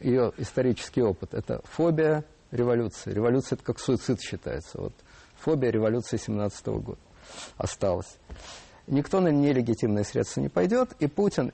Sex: male